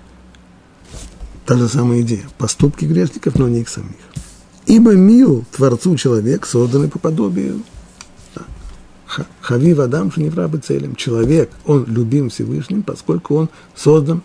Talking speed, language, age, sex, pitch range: 120 wpm, Russian, 50-69, male, 105-140 Hz